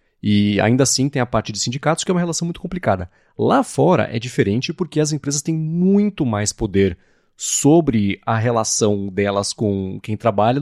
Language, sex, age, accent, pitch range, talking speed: Portuguese, male, 30-49, Brazilian, 105-155 Hz, 180 wpm